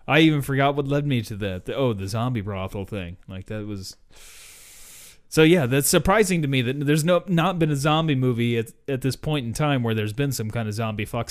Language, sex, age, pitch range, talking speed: English, male, 30-49, 110-155 Hz, 240 wpm